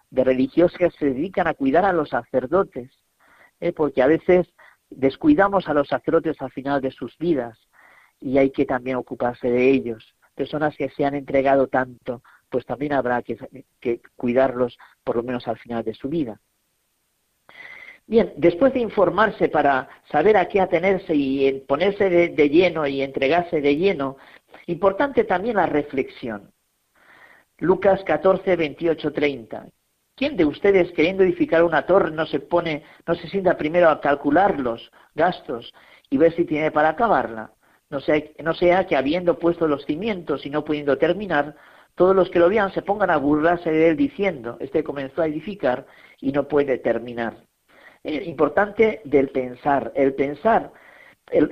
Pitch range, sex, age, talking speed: 135-175 Hz, female, 40-59, 160 wpm